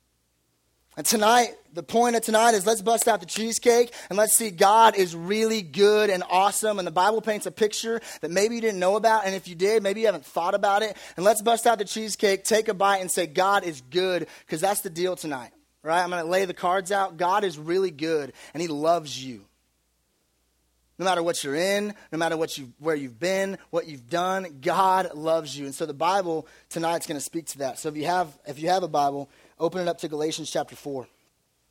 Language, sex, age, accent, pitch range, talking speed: English, male, 30-49, American, 165-215 Hz, 230 wpm